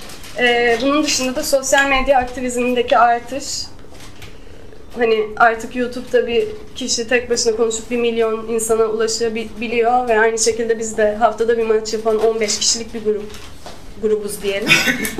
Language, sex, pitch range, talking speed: Turkish, female, 215-245 Hz, 140 wpm